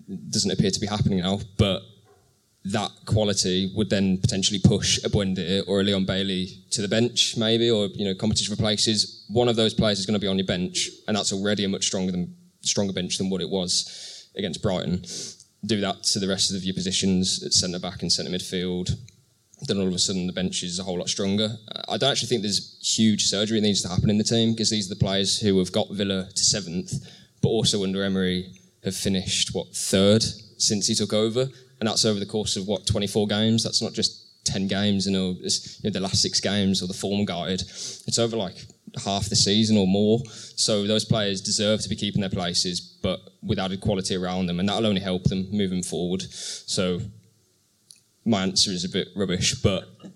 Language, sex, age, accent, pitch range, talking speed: English, male, 20-39, British, 95-110 Hz, 215 wpm